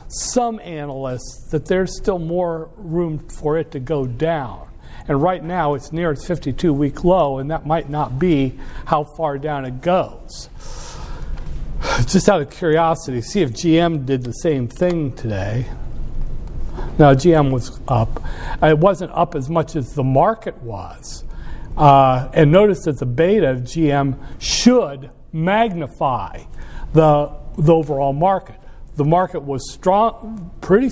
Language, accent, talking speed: English, American, 145 wpm